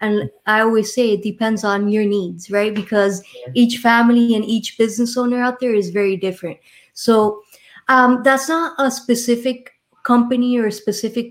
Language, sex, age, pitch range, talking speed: English, female, 20-39, 205-235 Hz, 170 wpm